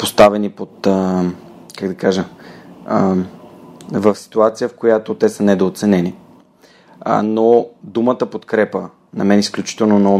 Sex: male